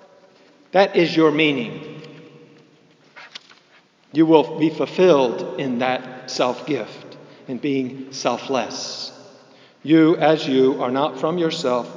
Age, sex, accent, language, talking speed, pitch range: 50-69, male, American, English, 105 wpm, 135-190 Hz